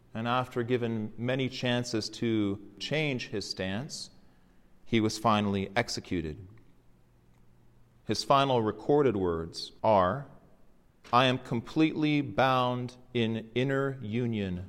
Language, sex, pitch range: English, male, 100-125 Hz